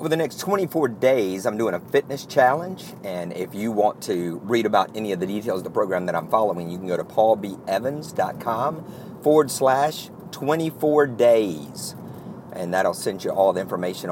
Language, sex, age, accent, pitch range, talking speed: English, male, 50-69, American, 105-140 Hz, 185 wpm